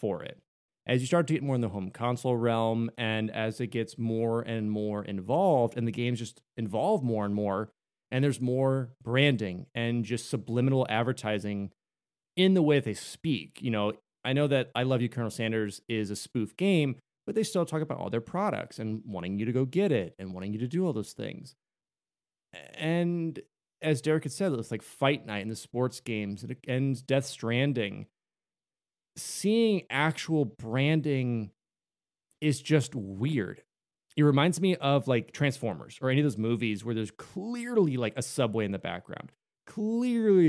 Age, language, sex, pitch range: 30-49, English, male, 110-155 Hz